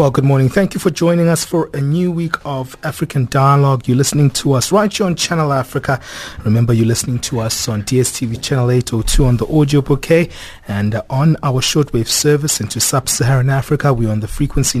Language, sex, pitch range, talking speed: English, male, 125-150 Hz, 205 wpm